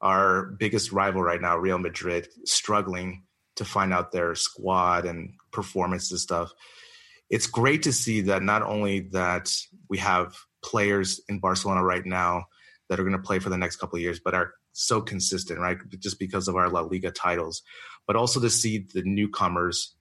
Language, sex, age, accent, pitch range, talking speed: English, male, 30-49, American, 95-110 Hz, 185 wpm